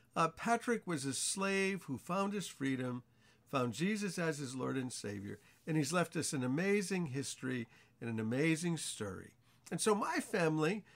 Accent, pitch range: American, 120-155 Hz